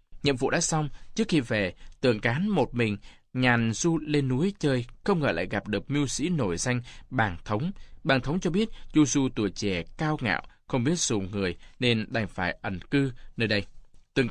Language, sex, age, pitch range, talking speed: Vietnamese, male, 20-39, 105-155 Hz, 205 wpm